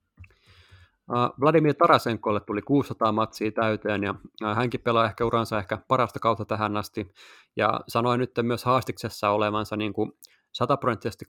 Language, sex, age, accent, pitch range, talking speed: Finnish, male, 30-49, native, 105-125 Hz, 120 wpm